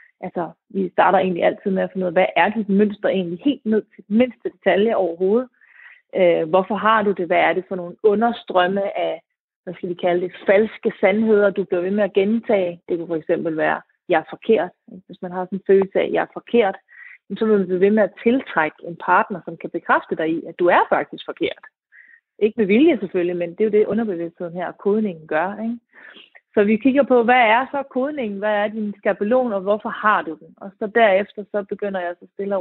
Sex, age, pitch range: female, 30-49, 185-225 Hz